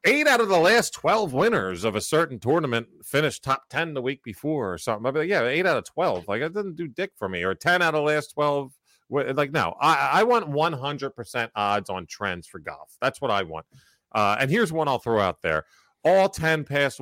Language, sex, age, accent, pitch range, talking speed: English, male, 40-59, American, 105-145 Hz, 235 wpm